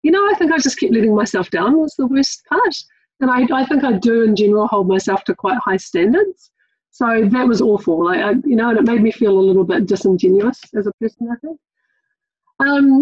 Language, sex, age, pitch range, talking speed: English, female, 40-59, 195-280 Hz, 235 wpm